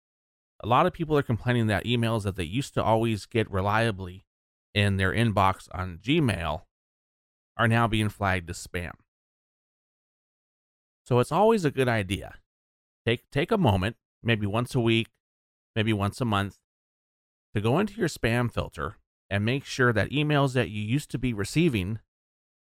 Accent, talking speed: American, 160 wpm